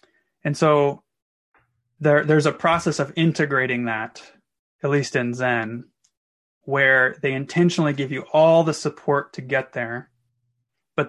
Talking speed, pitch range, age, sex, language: 130 wpm, 125-150 Hz, 20-39, male, English